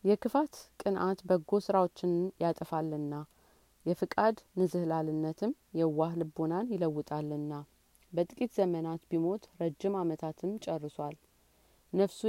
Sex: female